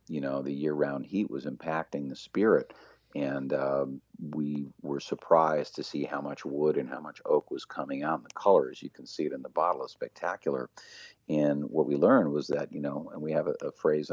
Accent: American